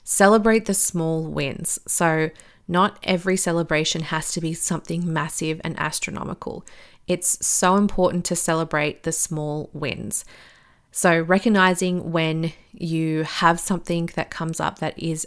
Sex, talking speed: female, 135 wpm